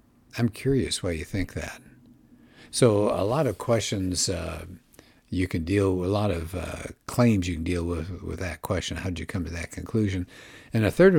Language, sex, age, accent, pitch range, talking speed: English, male, 60-79, American, 90-120 Hz, 205 wpm